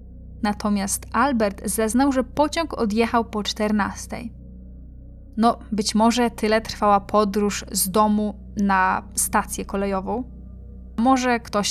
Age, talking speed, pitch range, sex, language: 10-29, 110 wpm, 200-230 Hz, female, Polish